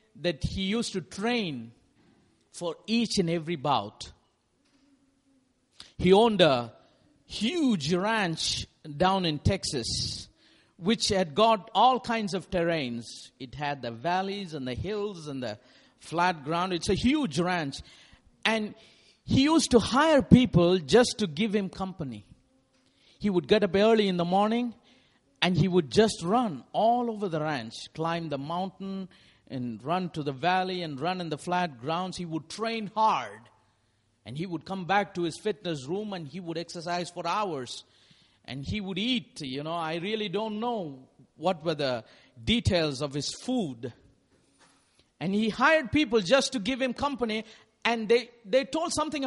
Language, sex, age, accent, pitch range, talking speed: English, male, 50-69, Indian, 155-220 Hz, 160 wpm